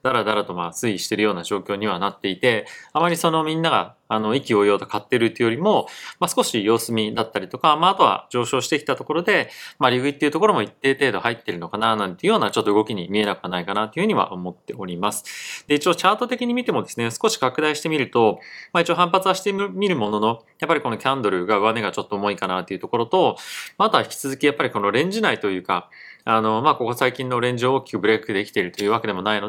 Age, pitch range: 30-49, 105-145 Hz